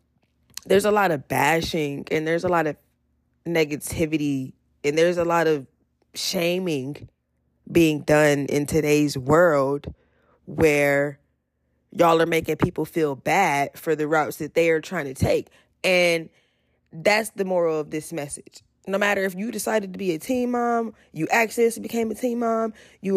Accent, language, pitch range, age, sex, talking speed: American, English, 140-220 Hz, 20-39, female, 160 wpm